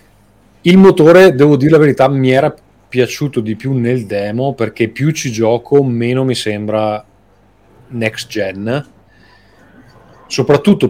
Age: 30-49